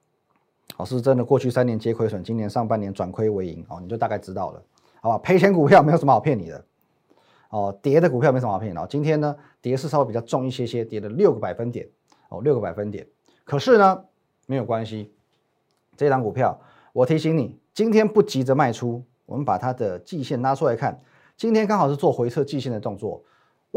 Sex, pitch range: male, 110-150 Hz